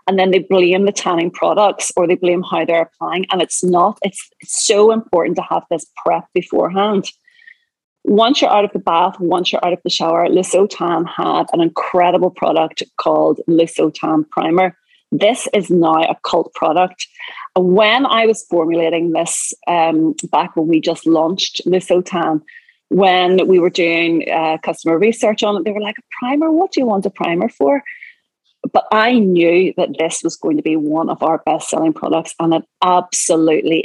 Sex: female